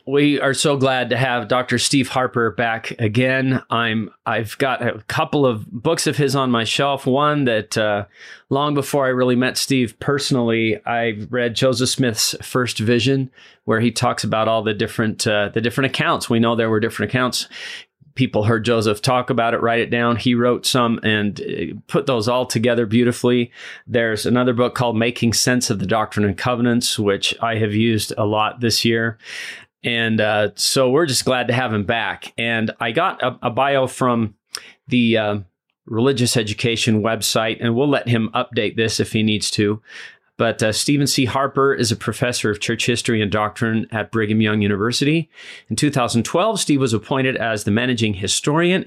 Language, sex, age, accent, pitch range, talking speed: English, male, 30-49, American, 110-130 Hz, 185 wpm